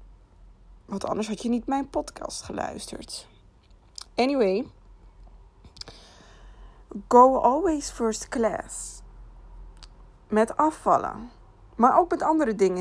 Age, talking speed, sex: 20-39, 95 wpm, female